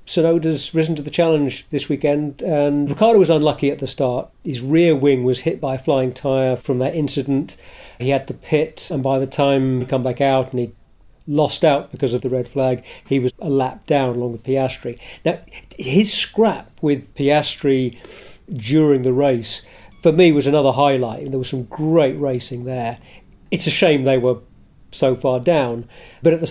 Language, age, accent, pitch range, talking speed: English, 40-59, British, 130-165 Hz, 190 wpm